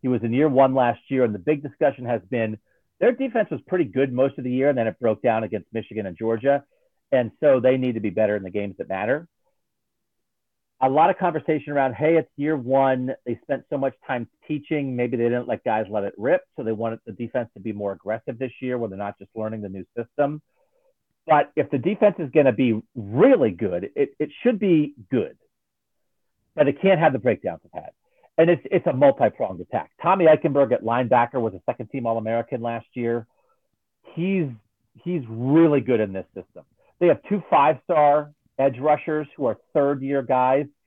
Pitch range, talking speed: 120-150 Hz, 205 wpm